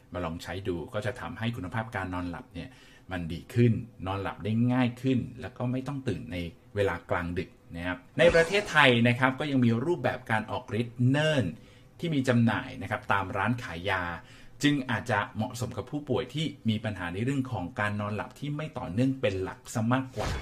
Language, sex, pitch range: Thai, male, 110-130 Hz